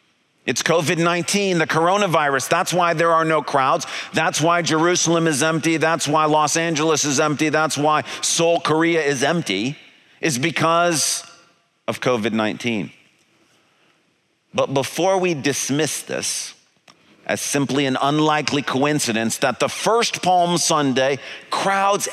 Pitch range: 140-175 Hz